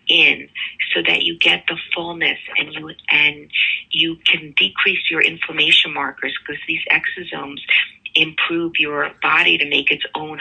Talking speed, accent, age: 150 wpm, American, 40-59